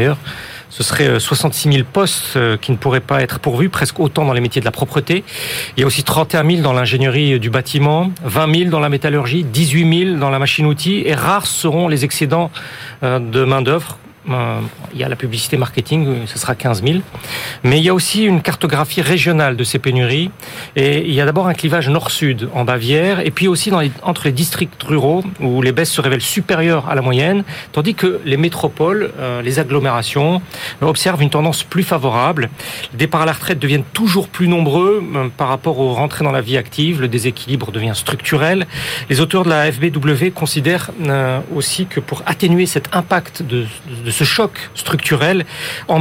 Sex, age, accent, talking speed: male, 40-59, French, 195 wpm